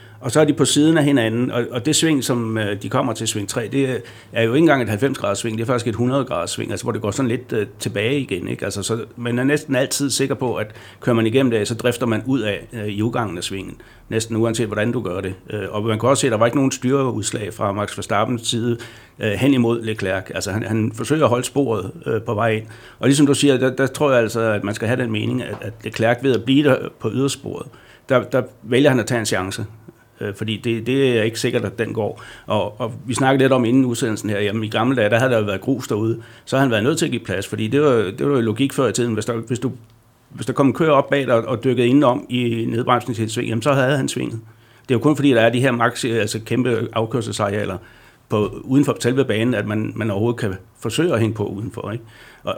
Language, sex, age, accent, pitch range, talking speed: Danish, male, 60-79, native, 110-130 Hz, 250 wpm